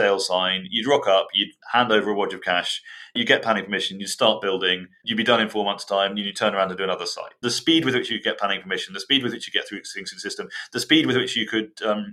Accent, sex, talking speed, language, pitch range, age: British, male, 285 wpm, English, 105-135 Hz, 30-49